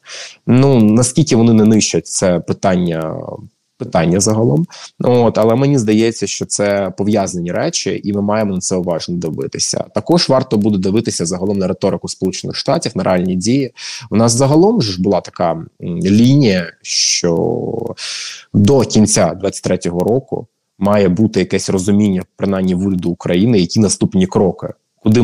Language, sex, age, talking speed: Ukrainian, male, 20-39, 140 wpm